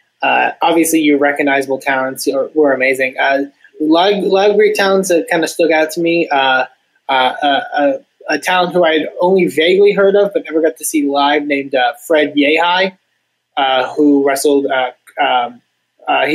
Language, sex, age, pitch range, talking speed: English, male, 20-39, 140-170 Hz, 175 wpm